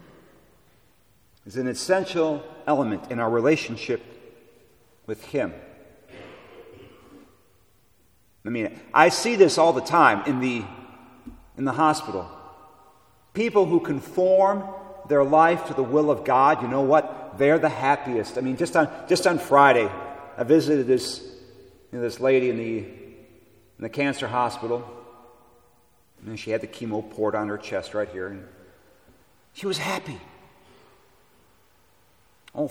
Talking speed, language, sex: 140 wpm, English, male